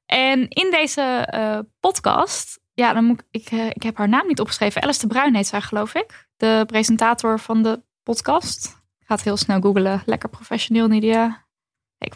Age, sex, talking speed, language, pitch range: 10-29, female, 185 wpm, Dutch, 210-260 Hz